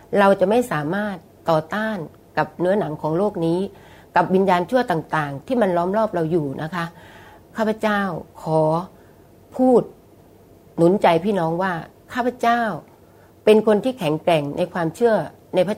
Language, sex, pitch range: Thai, female, 155-200 Hz